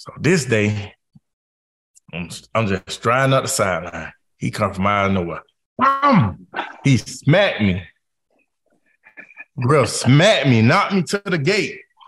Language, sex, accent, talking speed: English, male, American, 135 wpm